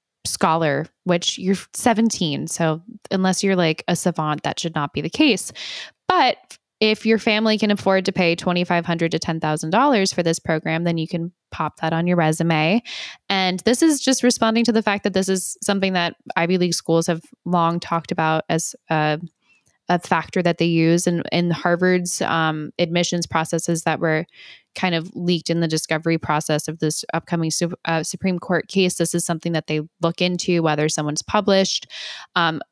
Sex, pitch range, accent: female, 165-195 Hz, American